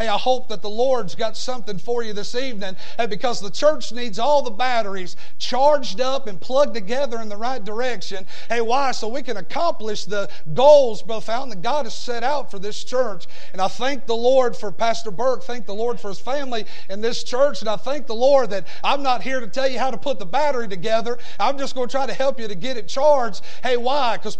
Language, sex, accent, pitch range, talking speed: English, male, American, 220-270 Hz, 240 wpm